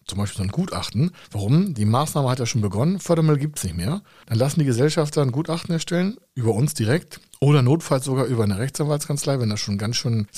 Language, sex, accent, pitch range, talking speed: German, male, German, 110-145 Hz, 225 wpm